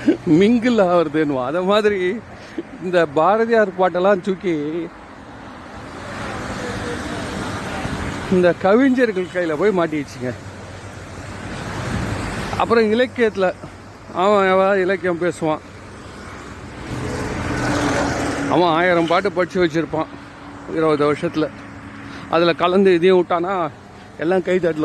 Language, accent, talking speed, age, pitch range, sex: Tamil, native, 80 wpm, 40-59, 120-195 Hz, male